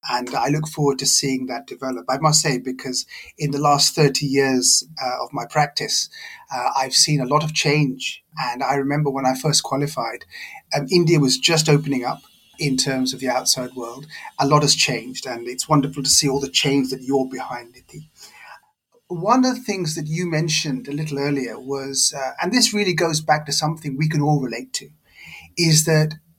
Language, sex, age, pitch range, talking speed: English, male, 30-49, 135-165 Hz, 200 wpm